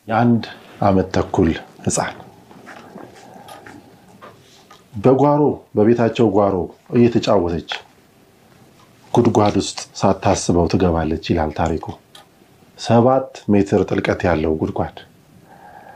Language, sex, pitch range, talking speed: Amharic, male, 95-125 Hz, 70 wpm